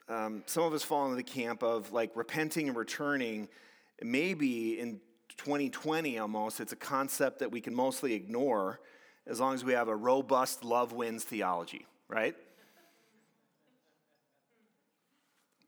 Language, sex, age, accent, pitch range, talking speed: English, male, 40-59, American, 120-160 Hz, 140 wpm